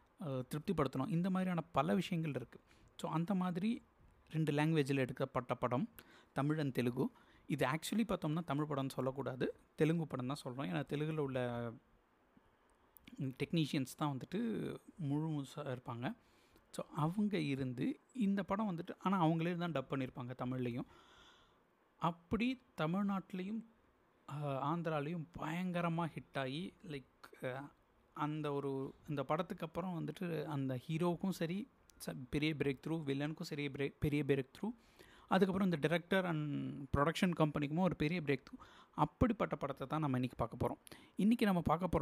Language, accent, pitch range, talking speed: Tamil, native, 135-175 Hz, 135 wpm